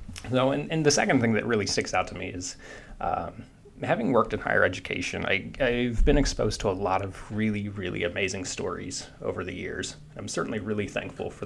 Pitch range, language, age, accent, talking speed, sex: 100-125 Hz, English, 30-49, American, 200 wpm, male